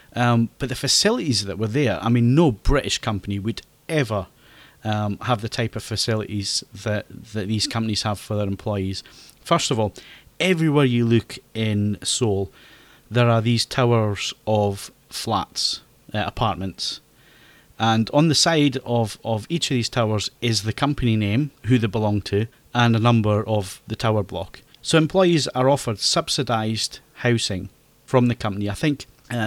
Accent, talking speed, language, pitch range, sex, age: British, 165 wpm, English, 105-125 Hz, male, 30-49